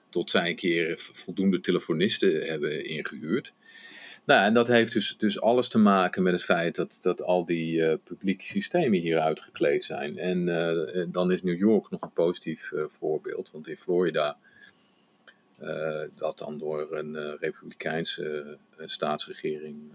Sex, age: male, 50-69